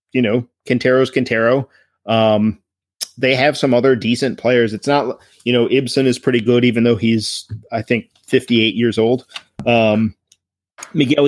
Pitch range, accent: 110-130 Hz, American